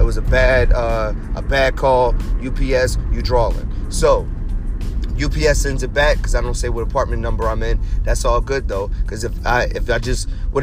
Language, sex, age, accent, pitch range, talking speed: English, male, 30-49, American, 105-130 Hz, 205 wpm